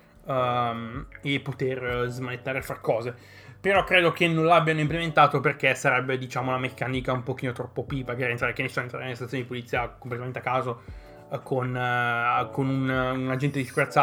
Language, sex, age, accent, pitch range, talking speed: Italian, male, 20-39, native, 125-150 Hz, 195 wpm